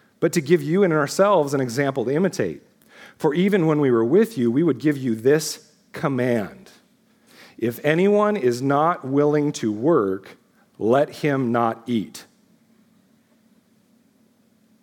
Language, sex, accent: English, male, American